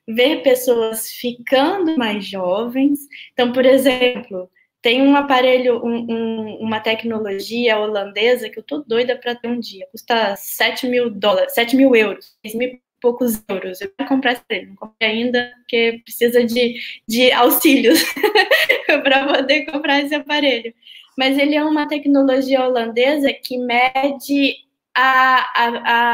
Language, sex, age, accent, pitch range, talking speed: Portuguese, female, 10-29, Brazilian, 235-285 Hz, 140 wpm